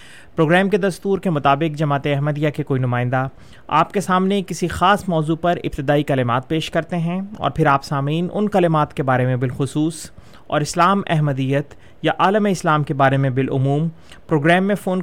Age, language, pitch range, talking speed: 30-49, Urdu, 140-175 Hz, 180 wpm